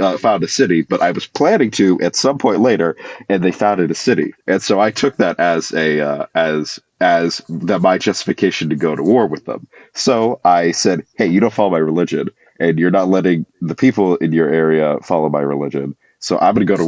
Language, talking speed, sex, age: English, 230 wpm, male, 30-49